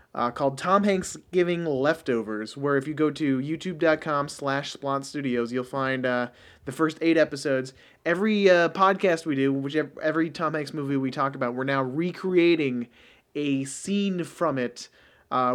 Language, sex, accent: English, male, American